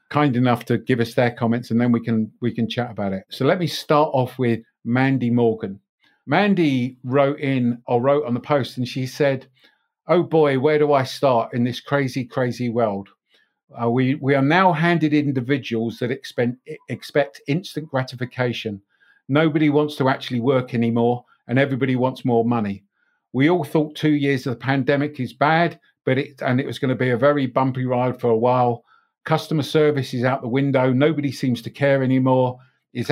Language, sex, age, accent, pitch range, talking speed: English, male, 50-69, British, 120-140 Hz, 190 wpm